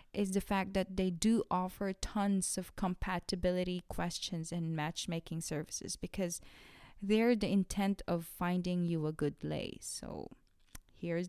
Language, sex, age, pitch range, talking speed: English, female, 20-39, 175-210 Hz, 140 wpm